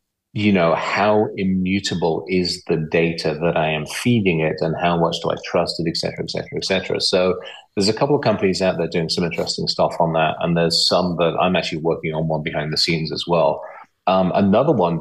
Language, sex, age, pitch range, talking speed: Hebrew, male, 30-49, 80-95 Hz, 225 wpm